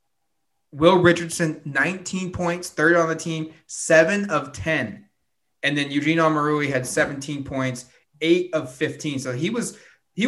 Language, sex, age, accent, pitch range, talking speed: English, male, 20-39, American, 140-170 Hz, 145 wpm